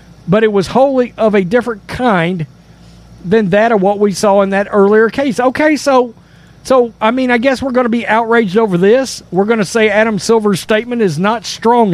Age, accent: 50-69, American